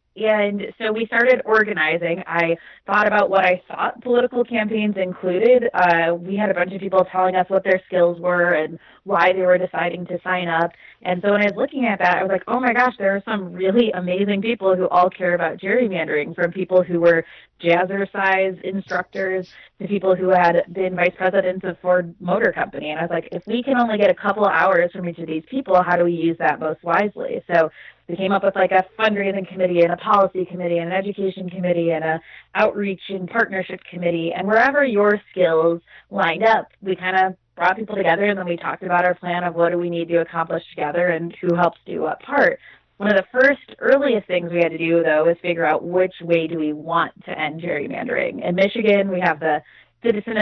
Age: 20-39